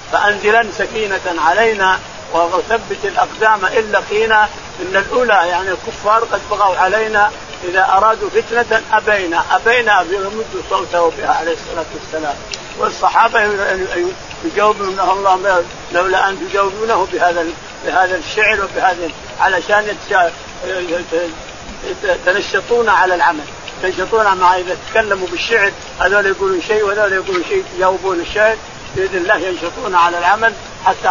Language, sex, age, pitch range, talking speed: Arabic, male, 60-79, 180-220 Hz, 110 wpm